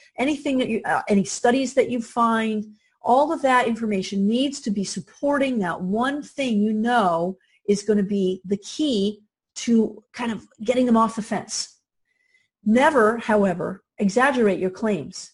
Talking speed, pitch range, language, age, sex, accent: 160 wpm, 195-260 Hz, English, 40-59, female, American